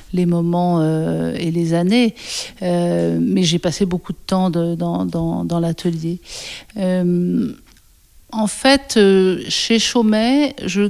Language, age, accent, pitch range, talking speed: French, 50-69, French, 165-190 Hz, 140 wpm